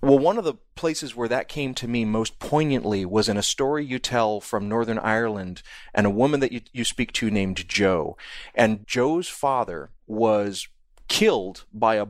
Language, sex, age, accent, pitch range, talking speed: English, male, 30-49, American, 110-135 Hz, 190 wpm